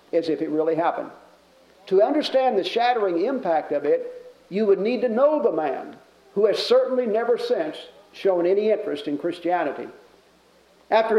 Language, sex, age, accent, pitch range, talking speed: English, male, 50-69, American, 180-250 Hz, 160 wpm